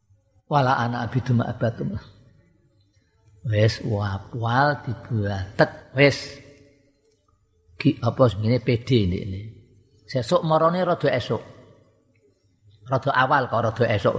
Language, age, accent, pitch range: Indonesian, 50-69, native, 110-140 Hz